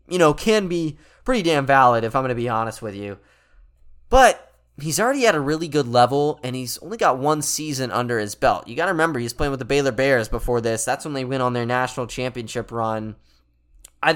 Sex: male